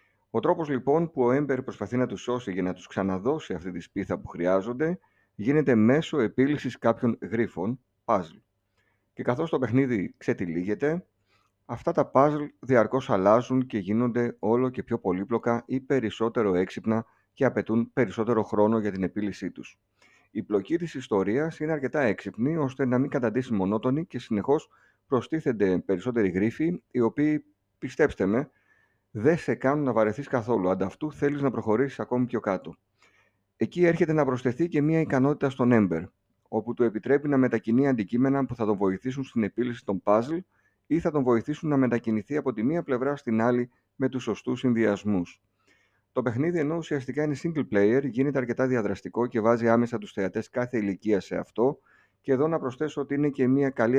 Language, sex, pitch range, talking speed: Greek, male, 110-135 Hz, 170 wpm